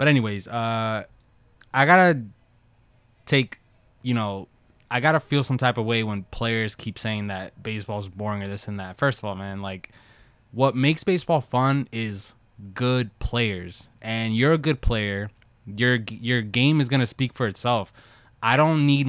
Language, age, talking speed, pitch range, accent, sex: English, 20-39, 180 wpm, 110-135 Hz, American, male